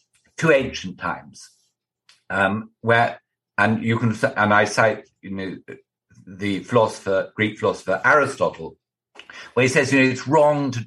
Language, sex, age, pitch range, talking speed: English, male, 50-69, 100-125 Hz, 145 wpm